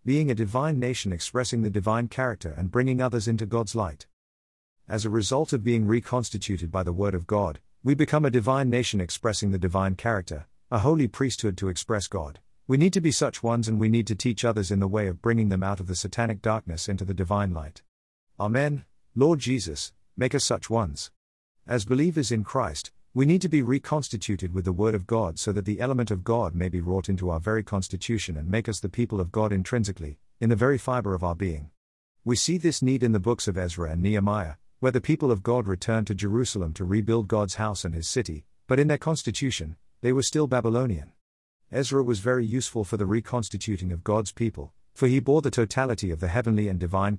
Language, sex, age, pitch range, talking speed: English, male, 50-69, 95-125 Hz, 215 wpm